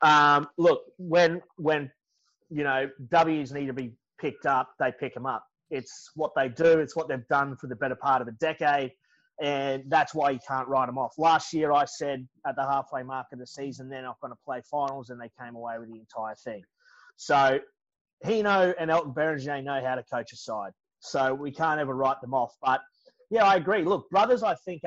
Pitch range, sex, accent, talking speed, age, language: 135-165 Hz, male, Australian, 215 wpm, 30-49, English